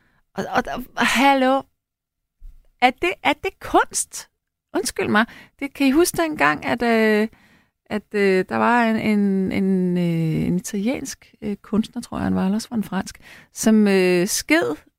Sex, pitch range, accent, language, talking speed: female, 195-255 Hz, native, Danish, 170 wpm